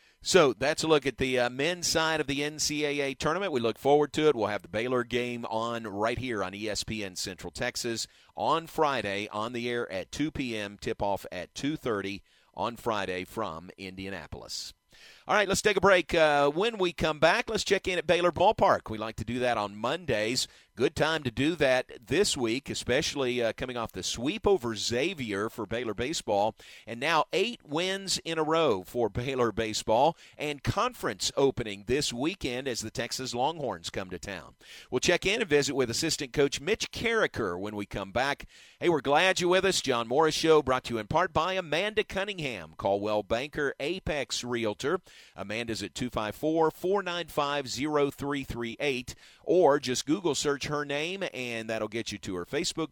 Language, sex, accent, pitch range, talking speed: English, male, American, 110-155 Hz, 180 wpm